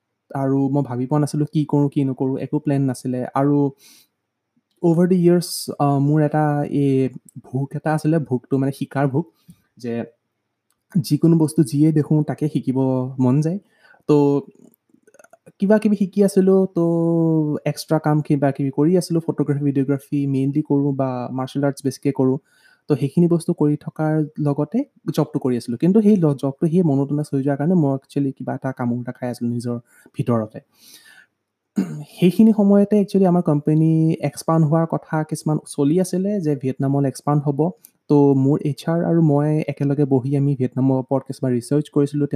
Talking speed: 105 wpm